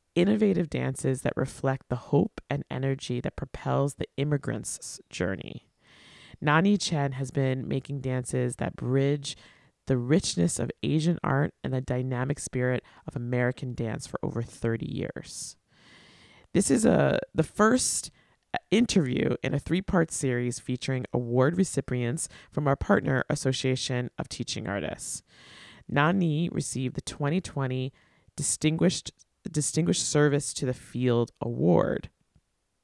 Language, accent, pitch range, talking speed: English, American, 125-150 Hz, 125 wpm